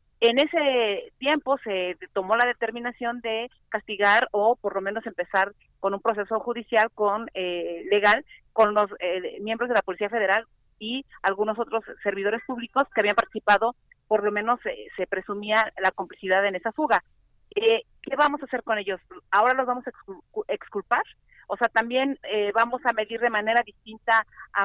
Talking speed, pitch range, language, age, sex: 175 wpm, 205-255 Hz, Spanish, 40-59, female